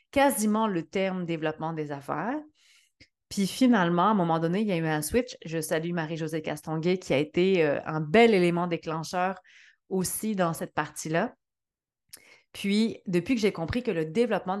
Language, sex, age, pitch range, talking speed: French, female, 30-49, 170-220 Hz, 170 wpm